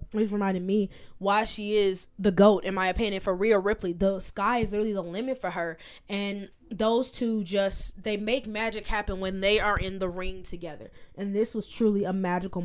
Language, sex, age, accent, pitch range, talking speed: English, female, 10-29, American, 190-220 Hz, 205 wpm